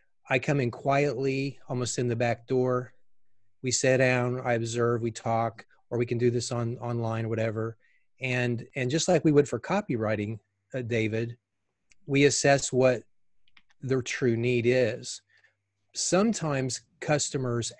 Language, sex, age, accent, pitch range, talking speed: English, male, 30-49, American, 110-130 Hz, 150 wpm